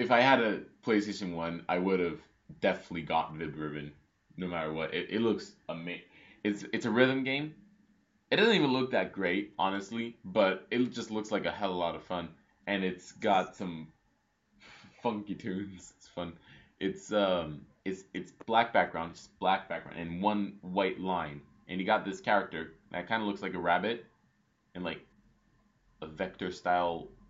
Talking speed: 180 wpm